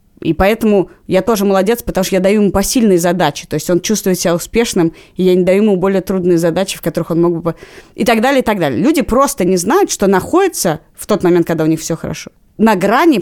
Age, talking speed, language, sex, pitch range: 20-39, 240 wpm, Russian, female, 165-220 Hz